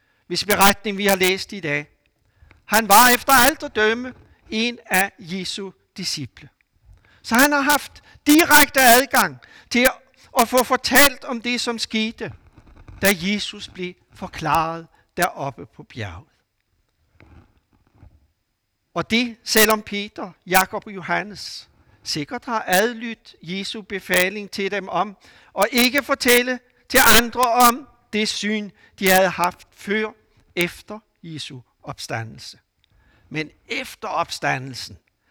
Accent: native